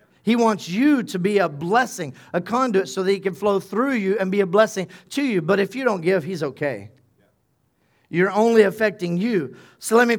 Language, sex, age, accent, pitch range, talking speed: English, male, 40-59, American, 175-220 Hz, 210 wpm